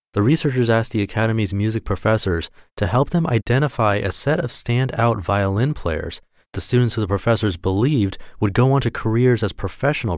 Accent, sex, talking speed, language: American, male, 175 wpm, English